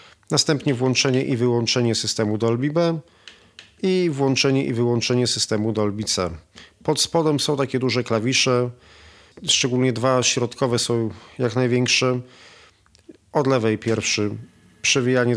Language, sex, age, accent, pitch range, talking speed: Polish, male, 40-59, native, 110-130 Hz, 115 wpm